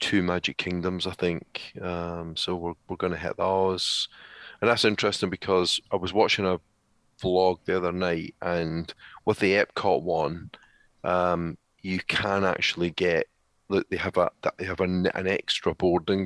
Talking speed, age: 170 wpm, 30-49